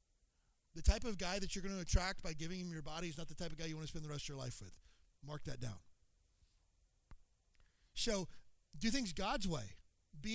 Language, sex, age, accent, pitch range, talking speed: English, male, 40-59, American, 140-190 Hz, 225 wpm